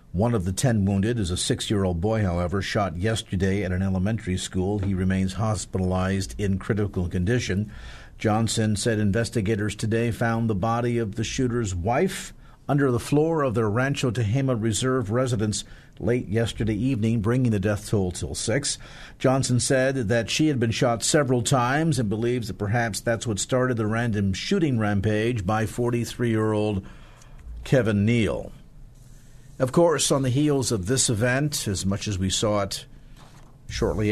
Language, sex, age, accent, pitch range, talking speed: English, male, 50-69, American, 100-130 Hz, 160 wpm